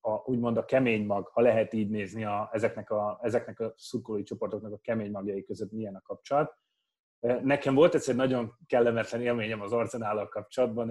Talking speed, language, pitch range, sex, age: 175 wpm, Hungarian, 105-120 Hz, male, 30-49